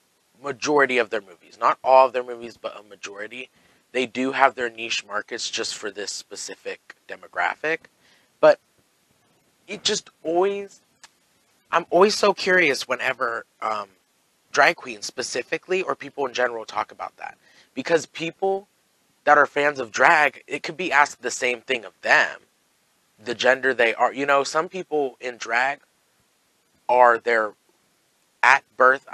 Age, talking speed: 30-49, 150 wpm